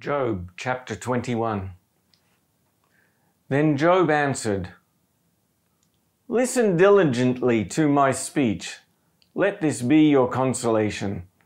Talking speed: 85 wpm